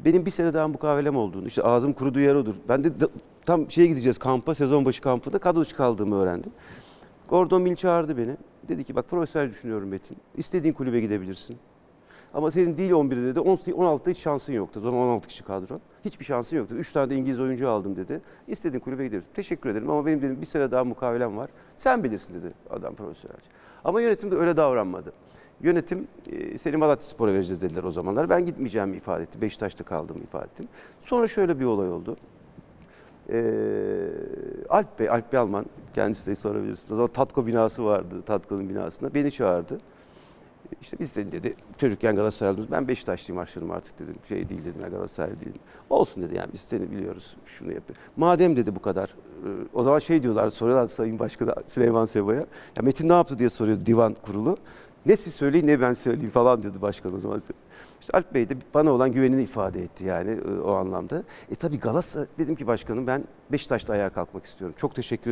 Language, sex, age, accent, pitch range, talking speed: Turkish, male, 40-59, native, 110-165 Hz, 180 wpm